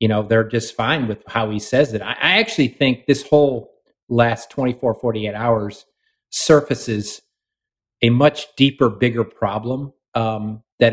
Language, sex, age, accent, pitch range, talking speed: English, male, 50-69, American, 115-145 Hz, 160 wpm